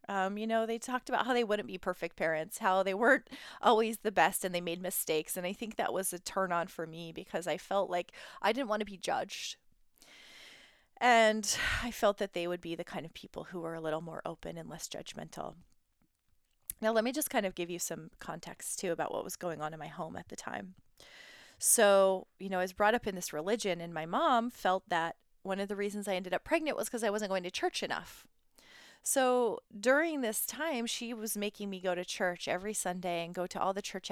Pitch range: 180-250 Hz